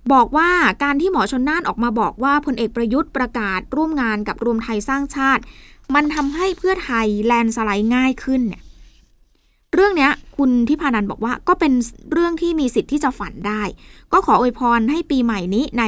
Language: Thai